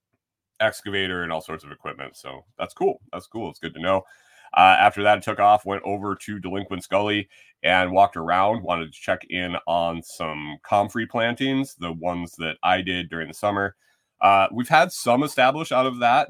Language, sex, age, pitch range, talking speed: English, male, 30-49, 85-105 Hz, 190 wpm